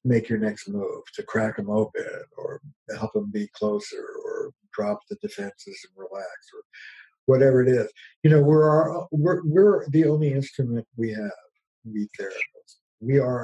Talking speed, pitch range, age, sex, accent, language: 170 wpm, 110-160 Hz, 50-69, male, American, English